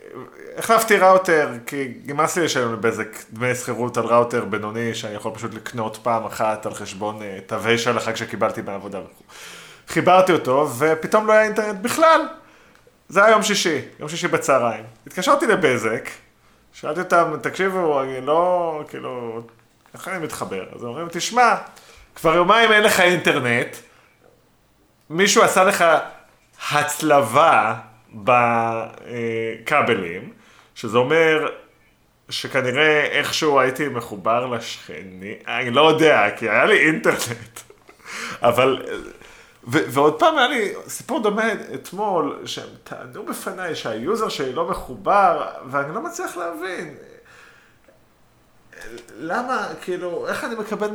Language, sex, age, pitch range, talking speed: Hebrew, male, 30-49, 115-190 Hz, 120 wpm